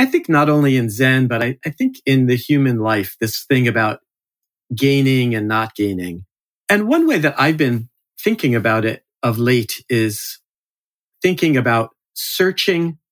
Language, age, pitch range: English, 40-59, 120-155 Hz